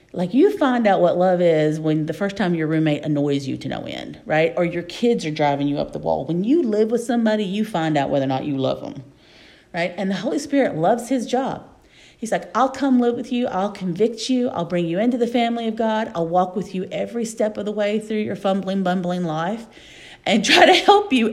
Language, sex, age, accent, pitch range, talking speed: English, female, 40-59, American, 160-220 Hz, 245 wpm